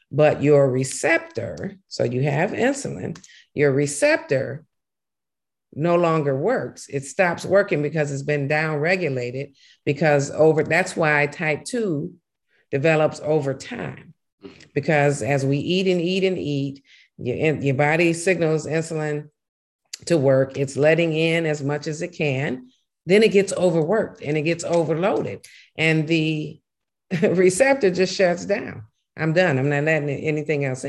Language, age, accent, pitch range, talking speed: English, 50-69, American, 140-170 Hz, 140 wpm